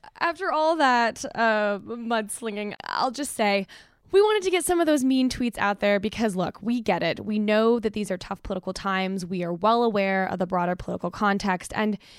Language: English